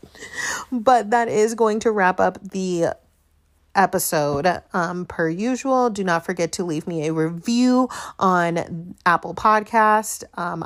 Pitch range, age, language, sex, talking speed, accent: 165-210 Hz, 30-49, English, female, 135 wpm, American